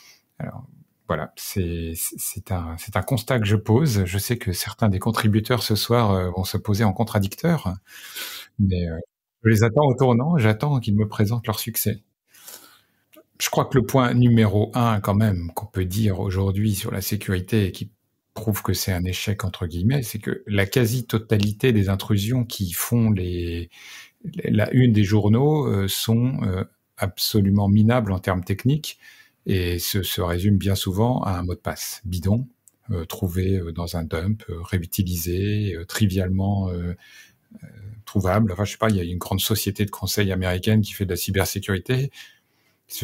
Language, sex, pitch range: French, male, 95-110 Hz